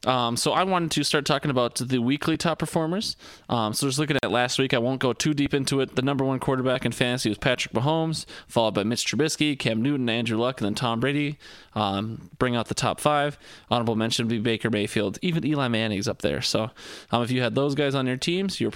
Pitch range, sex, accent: 115-150 Hz, male, American